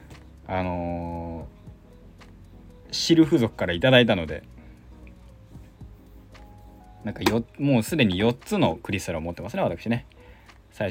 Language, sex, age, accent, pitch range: Japanese, male, 20-39, native, 85-120 Hz